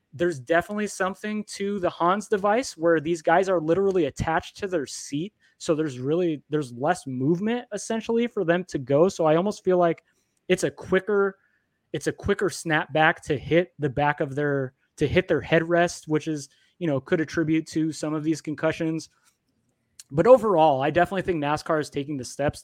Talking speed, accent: 190 wpm, American